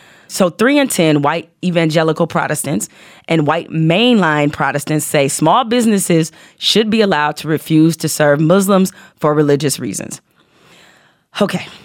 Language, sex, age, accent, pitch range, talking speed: English, female, 30-49, American, 150-185 Hz, 130 wpm